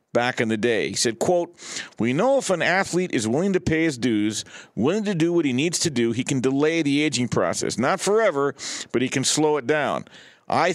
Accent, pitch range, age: American, 120-165 Hz, 50-69